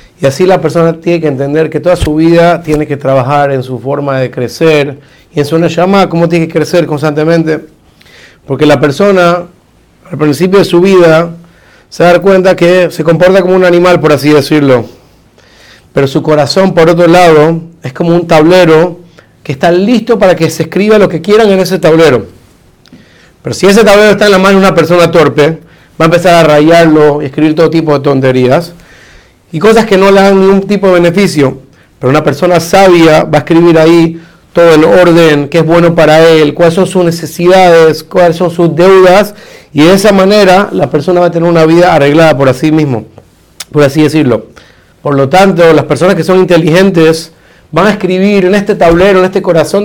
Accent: Argentinian